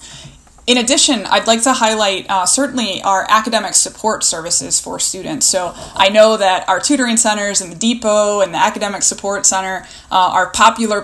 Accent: American